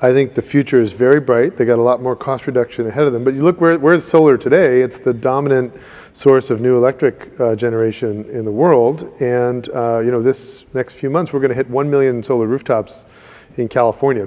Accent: American